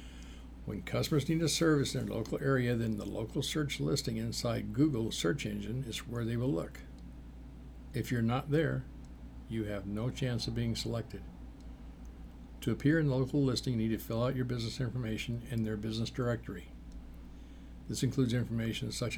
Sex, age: male, 60-79